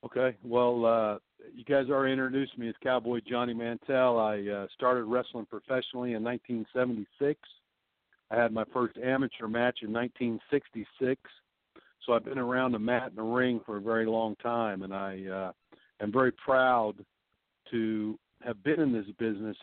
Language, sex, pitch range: English, male, 110-125 Hz